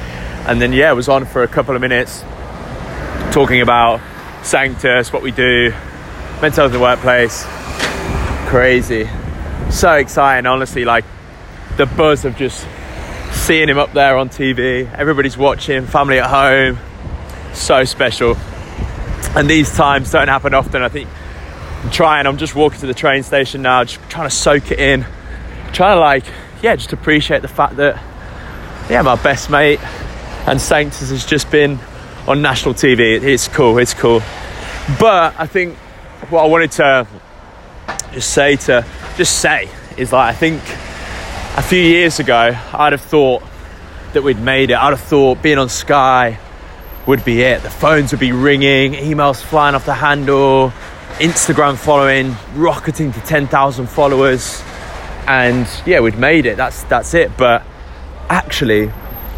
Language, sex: English, male